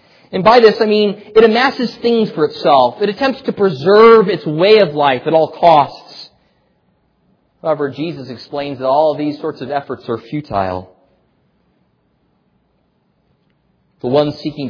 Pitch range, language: 125-170 Hz, English